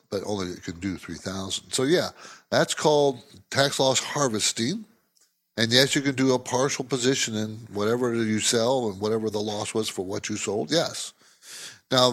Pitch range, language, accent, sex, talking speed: 110-145 Hz, English, American, male, 185 wpm